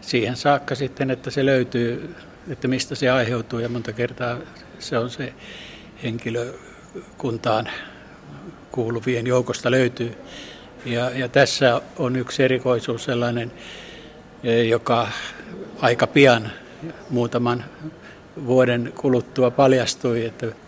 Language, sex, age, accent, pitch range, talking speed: Finnish, male, 60-79, native, 120-135 Hz, 100 wpm